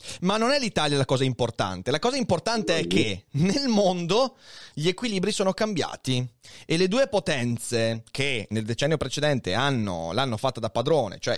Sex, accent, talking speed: male, native, 165 wpm